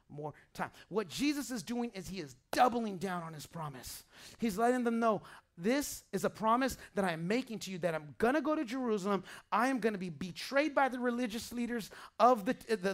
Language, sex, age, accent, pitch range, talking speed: English, male, 30-49, American, 220-315 Hz, 210 wpm